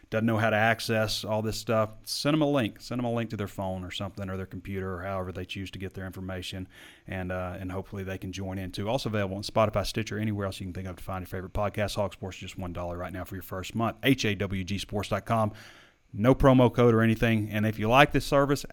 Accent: American